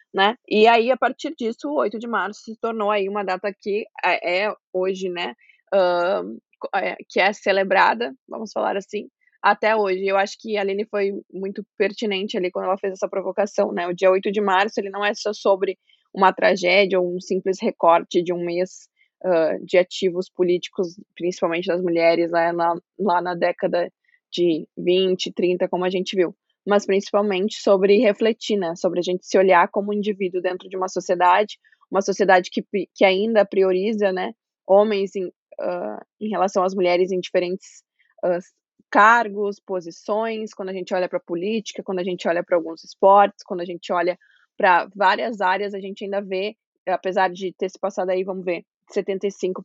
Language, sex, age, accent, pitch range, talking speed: Portuguese, female, 20-39, Brazilian, 185-210 Hz, 180 wpm